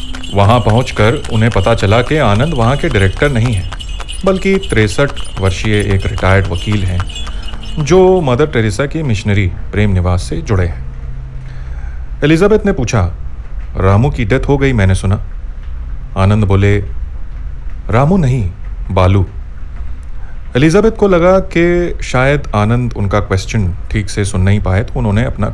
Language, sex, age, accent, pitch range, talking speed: Hindi, male, 30-49, native, 80-120 Hz, 145 wpm